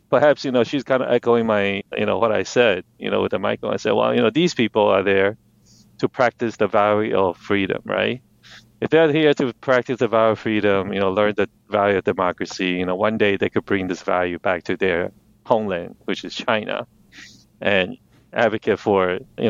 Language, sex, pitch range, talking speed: English, male, 95-115 Hz, 215 wpm